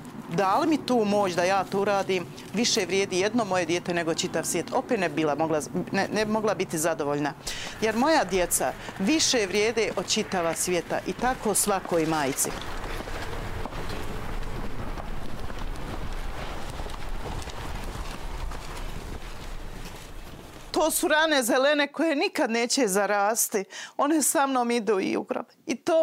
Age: 40-59